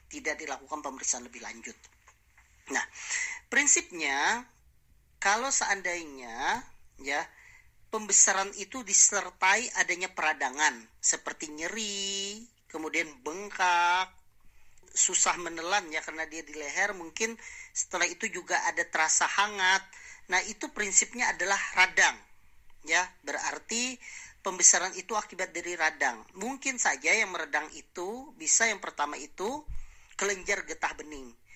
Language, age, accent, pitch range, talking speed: Indonesian, 40-59, native, 160-220 Hz, 110 wpm